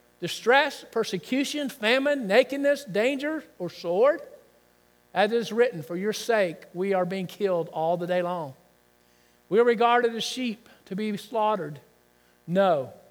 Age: 50-69